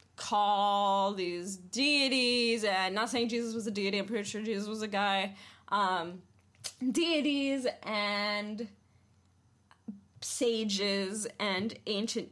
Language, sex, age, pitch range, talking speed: English, female, 10-29, 170-250 Hz, 110 wpm